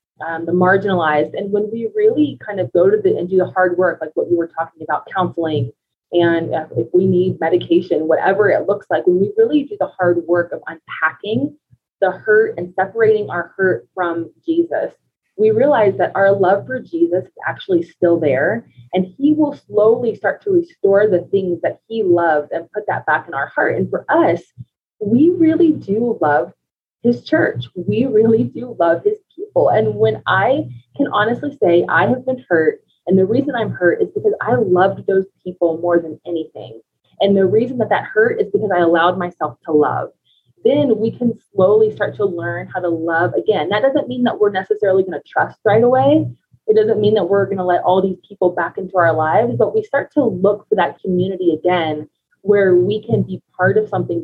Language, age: English, 20-39